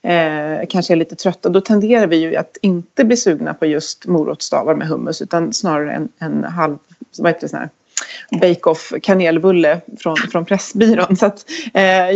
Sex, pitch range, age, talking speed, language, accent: female, 165-220 Hz, 30-49, 150 wpm, Swedish, native